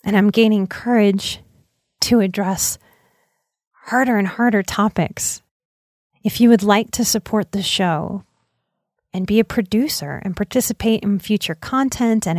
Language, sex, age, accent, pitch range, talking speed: English, female, 30-49, American, 185-220 Hz, 135 wpm